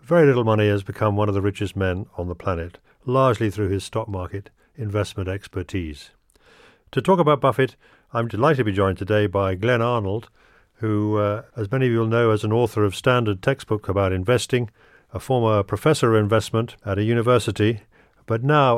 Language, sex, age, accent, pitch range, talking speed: English, male, 50-69, British, 100-120 Hz, 190 wpm